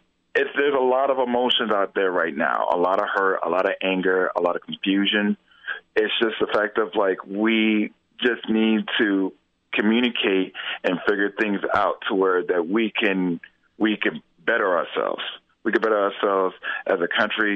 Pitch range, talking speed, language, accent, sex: 95-115 Hz, 180 wpm, English, American, male